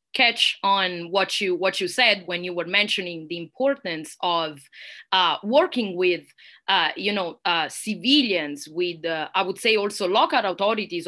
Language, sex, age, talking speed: English, female, 20-39, 160 wpm